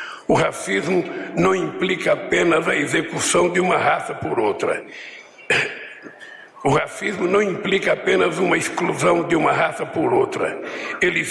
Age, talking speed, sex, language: 60-79, 135 wpm, male, Portuguese